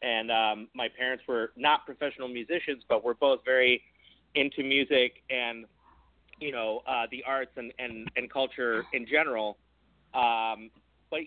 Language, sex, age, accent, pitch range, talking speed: English, male, 30-49, American, 115-140 Hz, 150 wpm